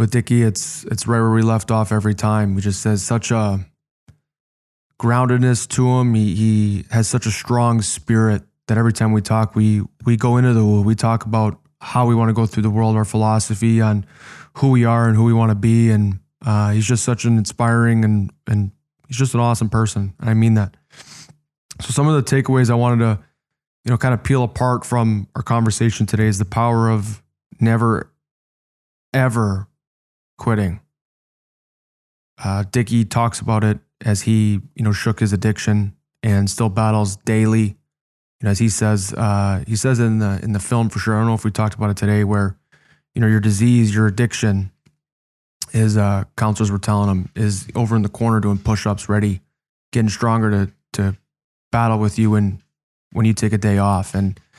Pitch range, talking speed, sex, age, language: 105-115 Hz, 200 wpm, male, 20-39, English